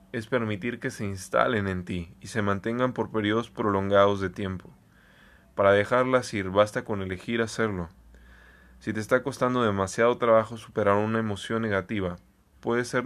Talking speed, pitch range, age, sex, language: 155 wpm, 100-115 Hz, 20-39, male, Spanish